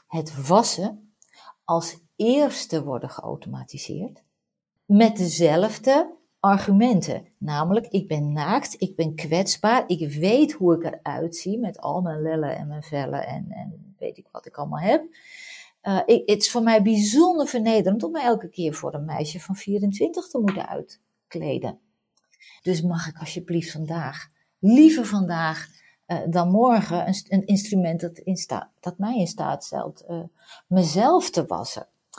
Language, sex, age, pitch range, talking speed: Dutch, female, 40-59, 165-230 Hz, 150 wpm